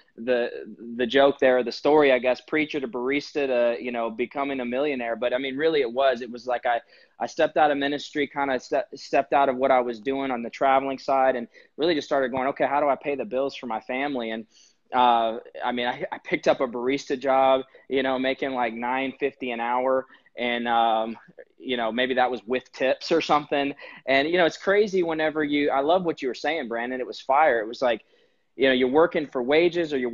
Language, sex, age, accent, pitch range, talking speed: English, male, 20-39, American, 125-145 Hz, 235 wpm